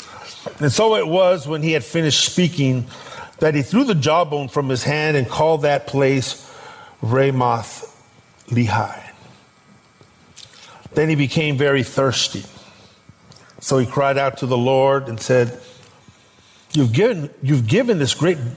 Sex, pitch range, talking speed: male, 115-145 Hz, 135 wpm